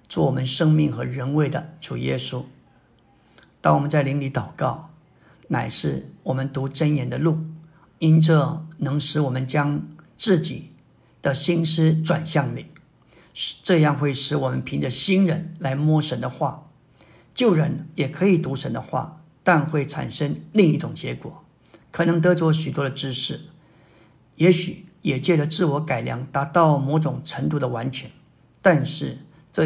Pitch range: 135-160 Hz